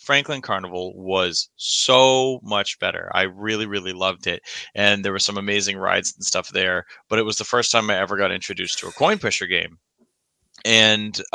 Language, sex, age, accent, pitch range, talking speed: English, male, 20-39, American, 100-115 Hz, 190 wpm